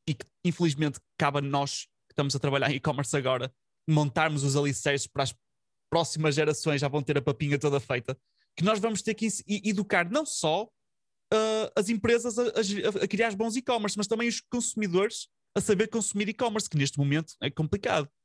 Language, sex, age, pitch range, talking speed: Portuguese, male, 20-39, 145-205 Hz, 185 wpm